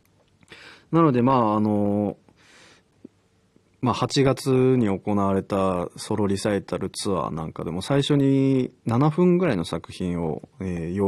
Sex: male